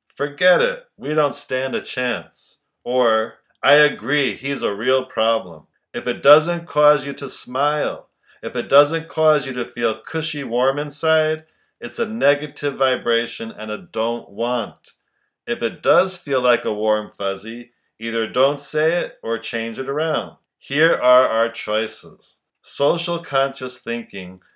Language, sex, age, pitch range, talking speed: English, male, 50-69, 115-145 Hz, 150 wpm